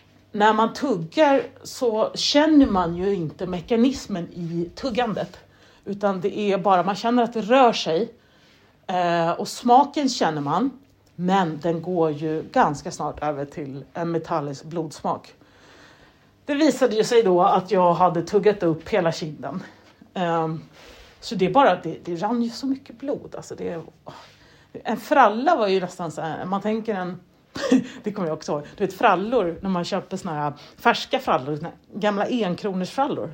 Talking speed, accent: 160 wpm, native